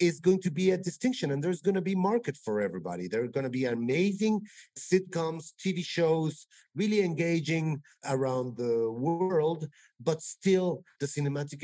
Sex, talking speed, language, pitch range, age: male, 155 wpm, English, 125-160 Hz, 40-59